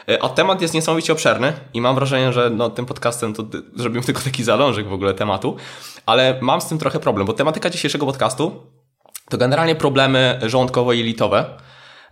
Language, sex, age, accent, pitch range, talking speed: Polish, male, 20-39, native, 110-135 Hz, 170 wpm